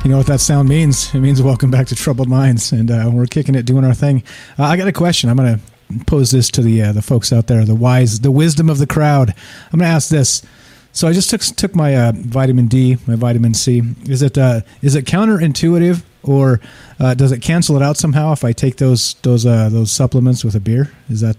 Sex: male